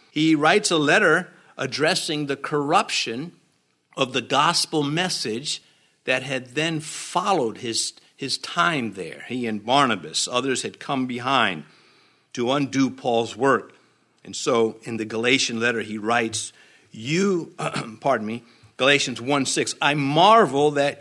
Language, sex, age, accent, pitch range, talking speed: English, male, 50-69, American, 125-180 Hz, 130 wpm